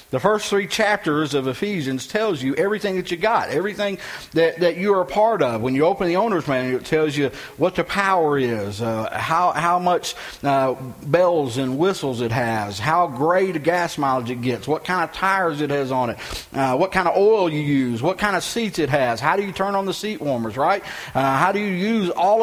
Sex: male